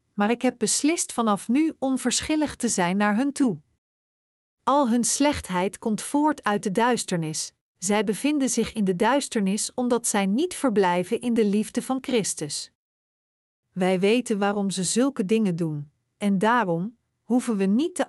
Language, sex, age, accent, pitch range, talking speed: Dutch, female, 50-69, Dutch, 200-245 Hz, 160 wpm